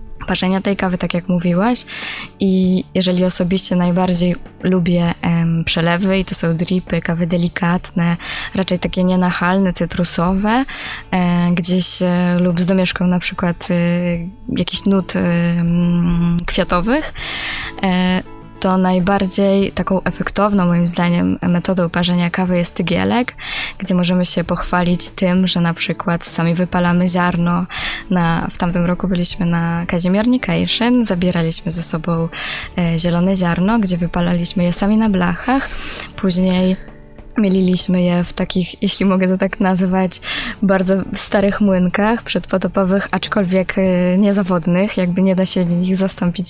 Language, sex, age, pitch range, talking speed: Polish, female, 20-39, 175-195 Hz, 120 wpm